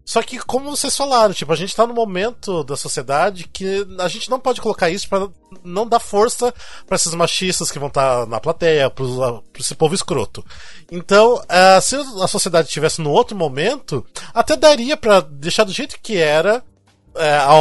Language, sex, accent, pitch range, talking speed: Portuguese, male, Brazilian, 155-220 Hz, 175 wpm